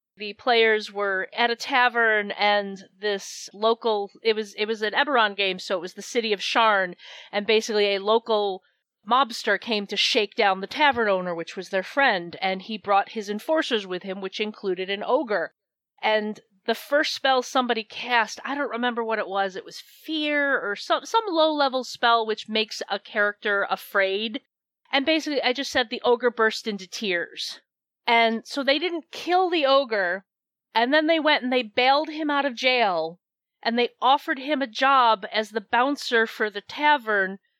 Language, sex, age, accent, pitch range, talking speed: English, female, 40-59, American, 205-265 Hz, 185 wpm